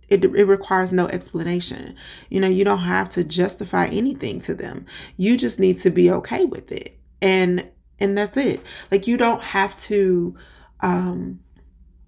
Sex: female